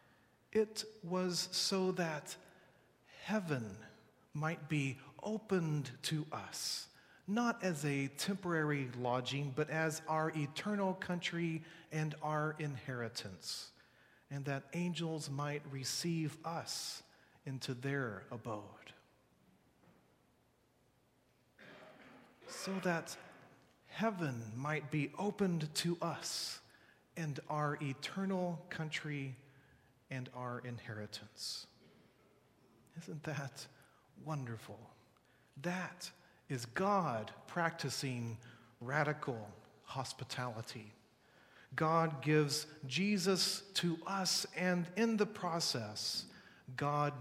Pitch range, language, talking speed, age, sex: 125-165 Hz, English, 85 wpm, 40-59, male